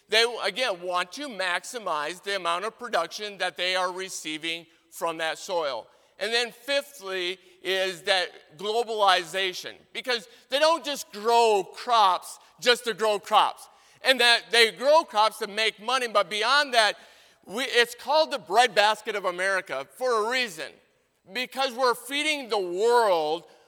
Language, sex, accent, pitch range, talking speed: English, male, American, 185-245 Hz, 145 wpm